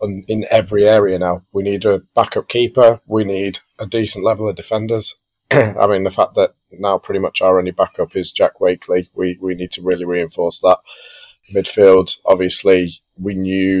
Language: English